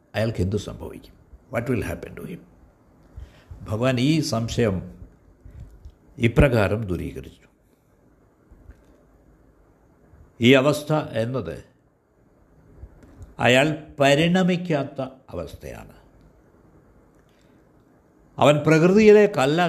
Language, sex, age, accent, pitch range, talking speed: Malayalam, male, 60-79, native, 90-150 Hz, 65 wpm